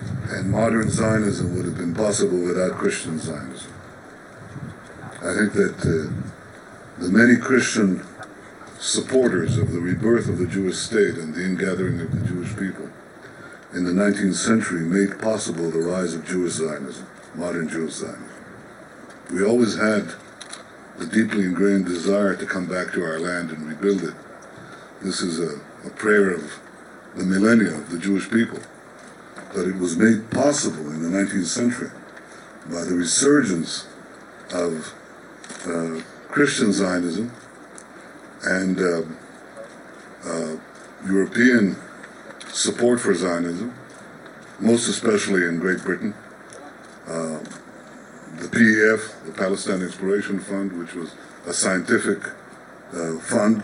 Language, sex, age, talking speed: English, male, 60-79, 130 wpm